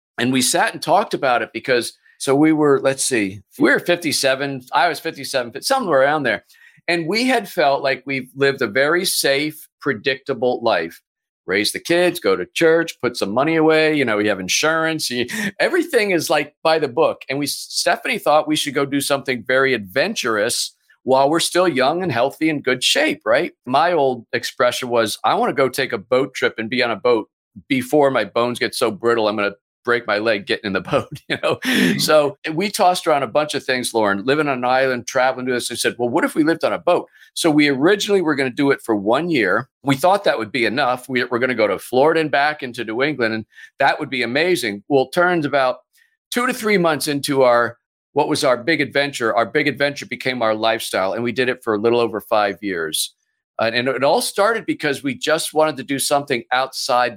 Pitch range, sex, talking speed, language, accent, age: 125-160 Hz, male, 225 wpm, English, American, 50-69